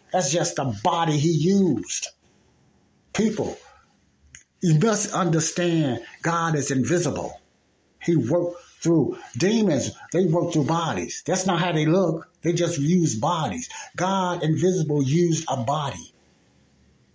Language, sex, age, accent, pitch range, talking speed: English, male, 60-79, American, 120-165 Hz, 120 wpm